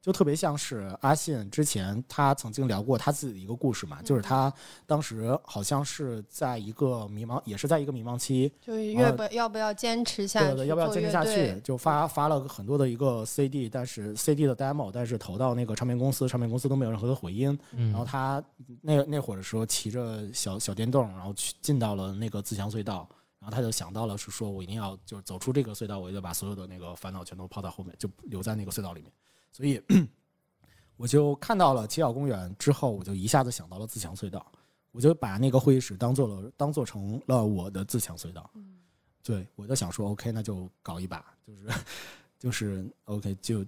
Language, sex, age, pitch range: Chinese, male, 20-39, 100-140 Hz